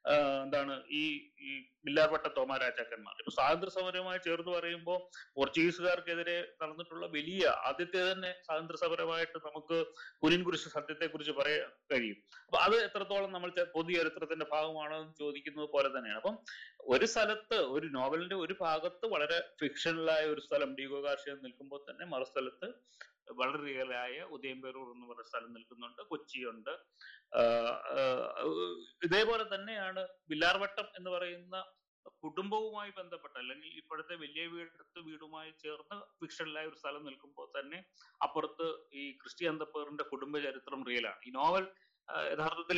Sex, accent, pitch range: male, native, 145-185 Hz